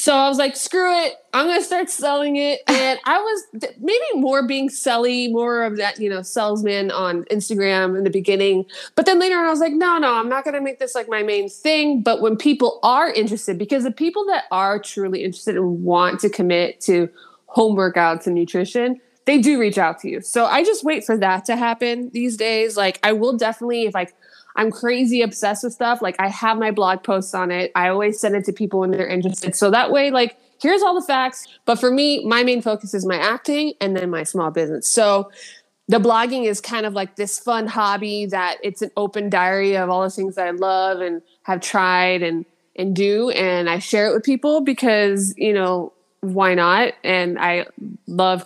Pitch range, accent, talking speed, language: 190-245 Hz, American, 220 wpm, English